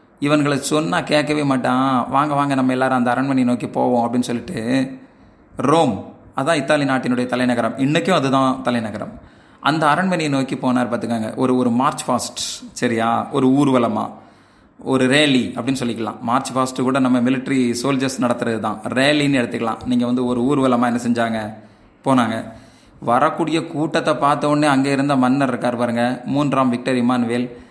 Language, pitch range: Tamil, 125-145 Hz